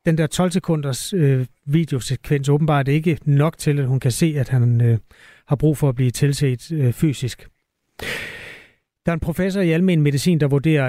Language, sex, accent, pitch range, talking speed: Danish, male, native, 135-165 Hz, 195 wpm